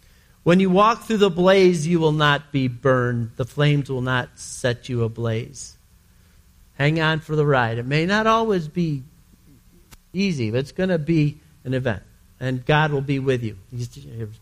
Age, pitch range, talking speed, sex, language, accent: 50-69, 115-150 Hz, 180 wpm, male, English, American